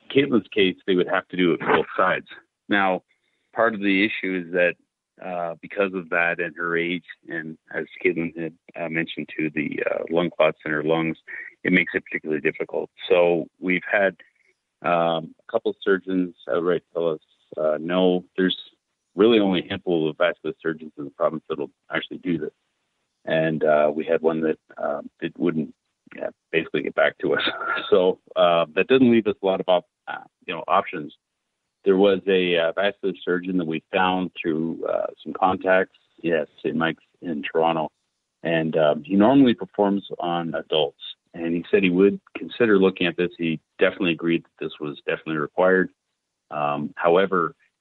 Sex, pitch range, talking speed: male, 80-95 Hz, 180 wpm